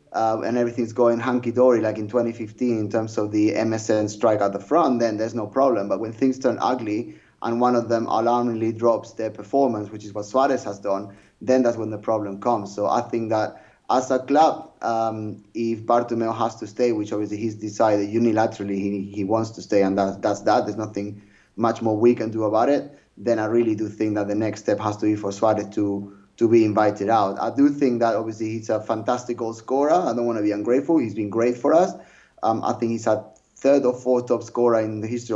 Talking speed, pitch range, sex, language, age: 225 wpm, 105-120 Hz, male, English, 30-49